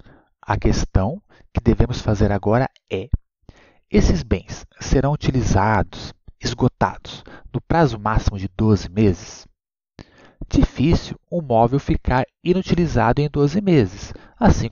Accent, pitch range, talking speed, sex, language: Brazilian, 110-165 Hz, 110 wpm, male, Portuguese